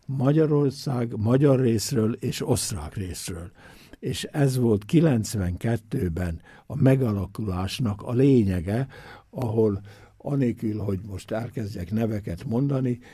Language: Hungarian